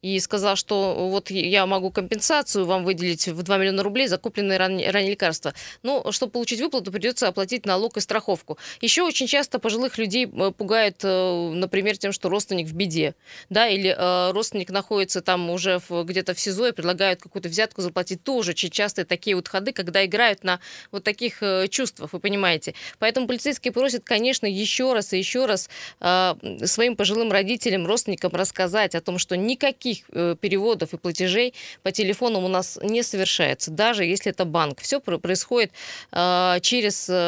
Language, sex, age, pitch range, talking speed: Russian, female, 20-39, 185-225 Hz, 160 wpm